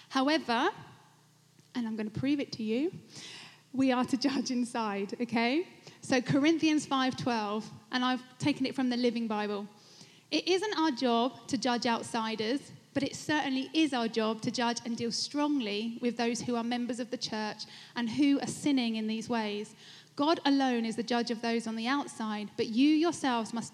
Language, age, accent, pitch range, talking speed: English, 10-29, British, 235-285 Hz, 185 wpm